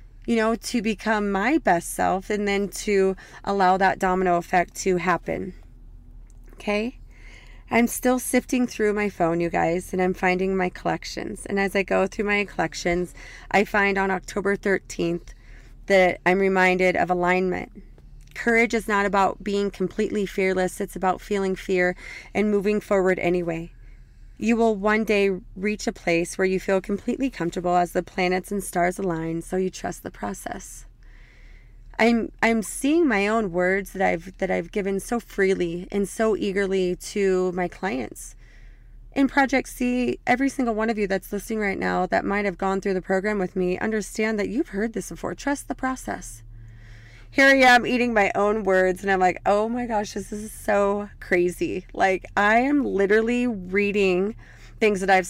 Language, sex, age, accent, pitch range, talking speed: English, female, 30-49, American, 180-215 Hz, 175 wpm